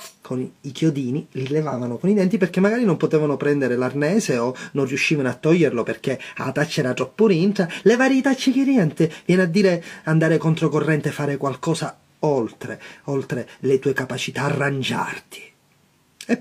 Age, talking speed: 30-49, 160 wpm